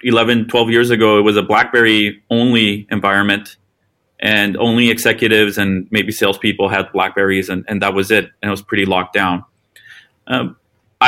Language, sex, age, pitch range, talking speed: English, male, 30-49, 100-115 Hz, 155 wpm